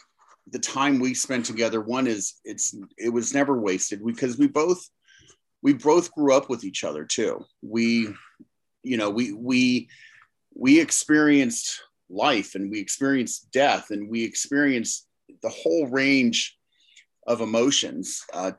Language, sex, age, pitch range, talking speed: English, male, 40-59, 115-160 Hz, 140 wpm